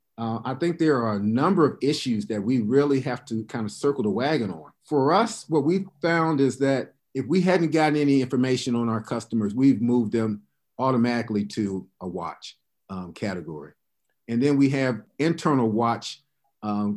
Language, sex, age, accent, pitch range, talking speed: English, male, 40-59, American, 110-135 Hz, 185 wpm